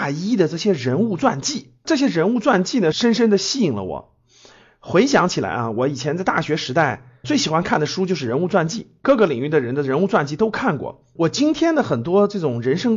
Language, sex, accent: Chinese, male, native